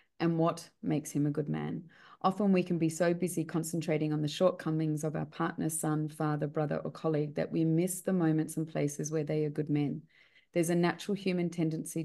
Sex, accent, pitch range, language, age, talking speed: female, Australian, 155-180 Hz, English, 30-49, 210 wpm